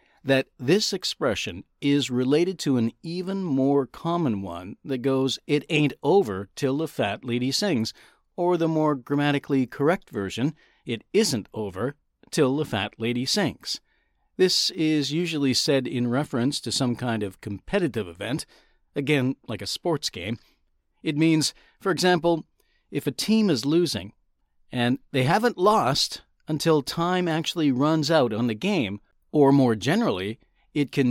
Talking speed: 150 wpm